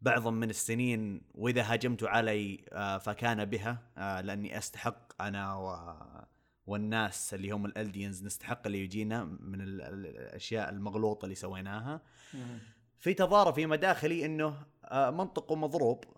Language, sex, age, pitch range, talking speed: Arabic, male, 20-39, 105-140 Hz, 110 wpm